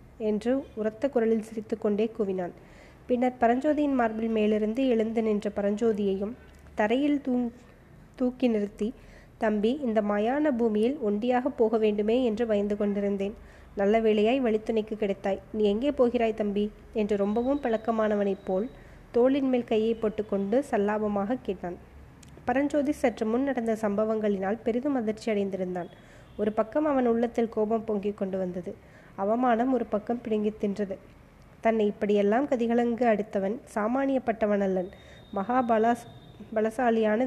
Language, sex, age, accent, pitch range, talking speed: Tamil, female, 20-39, native, 210-240 Hz, 115 wpm